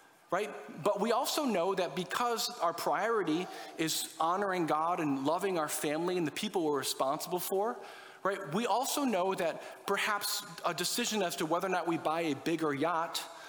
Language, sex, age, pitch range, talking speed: English, male, 40-59, 155-220 Hz, 180 wpm